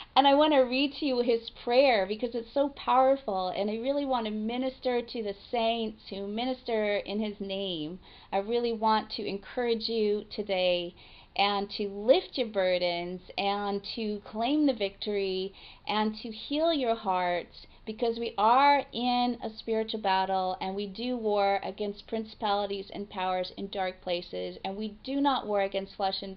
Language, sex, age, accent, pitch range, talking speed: English, female, 30-49, American, 195-245 Hz, 170 wpm